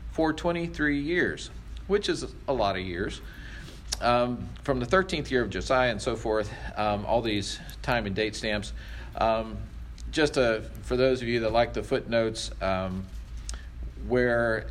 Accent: American